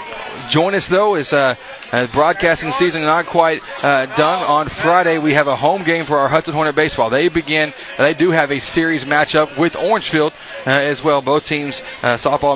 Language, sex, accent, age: English, male, American, 30-49